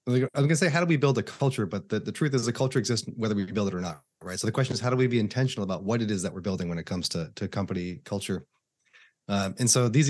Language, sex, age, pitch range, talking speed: English, male, 30-49, 95-120 Hz, 310 wpm